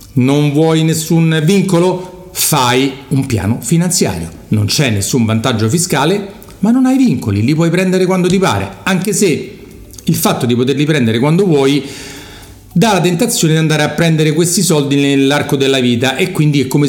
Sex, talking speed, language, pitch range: male, 170 wpm, Italian, 115-155 Hz